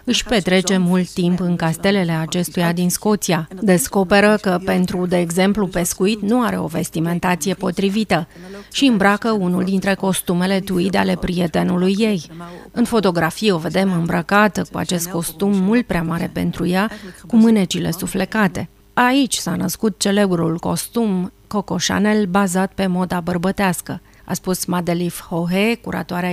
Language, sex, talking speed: Romanian, female, 140 wpm